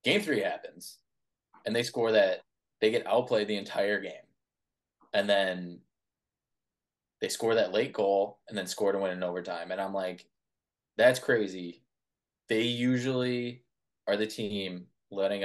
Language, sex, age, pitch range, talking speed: English, male, 20-39, 95-120 Hz, 150 wpm